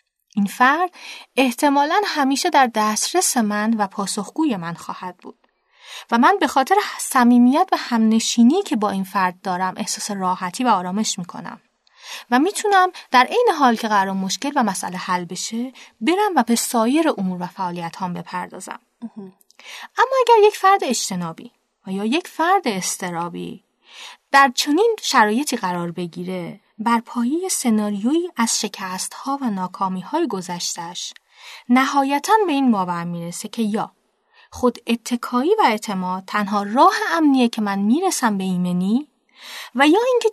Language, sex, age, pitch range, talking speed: Persian, female, 30-49, 190-280 Hz, 140 wpm